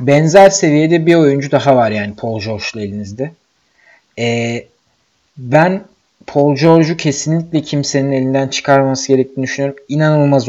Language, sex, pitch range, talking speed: Turkish, male, 130-175 Hz, 120 wpm